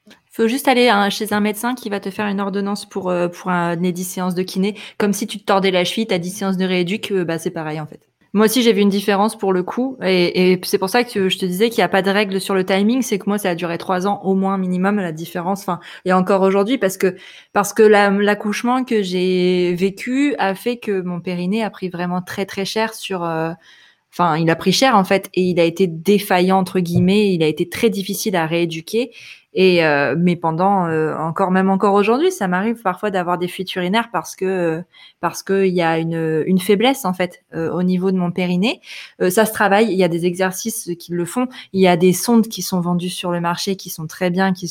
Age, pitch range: 20-39, 180-205 Hz